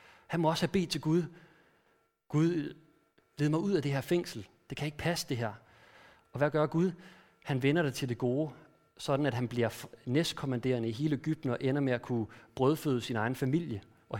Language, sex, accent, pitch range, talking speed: Danish, male, native, 120-160 Hz, 205 wpm